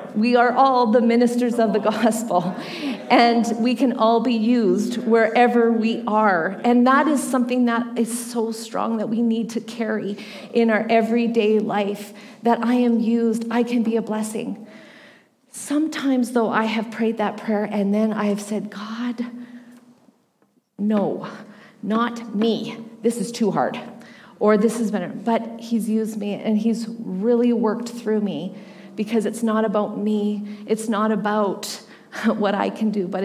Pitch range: 210-235 Hz